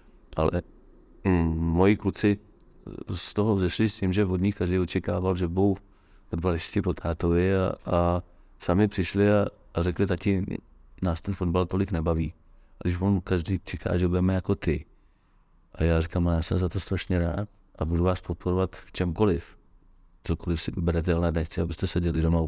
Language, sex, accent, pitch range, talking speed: Czech, male, native, 80-95 Hz, 170 wpm